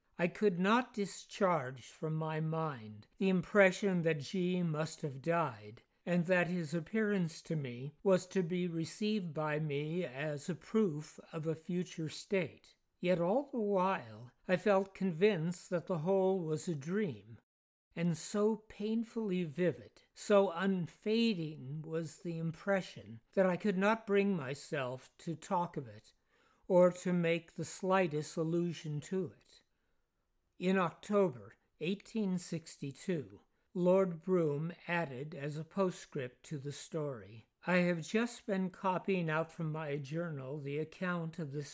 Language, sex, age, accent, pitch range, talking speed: English, male, 60-79, American, 150-185 Hz, 140 wpm